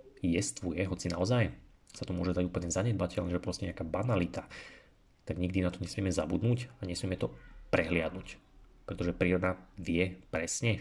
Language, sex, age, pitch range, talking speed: Slovak, male, 30-49, 90-105 Hz, 145 wpm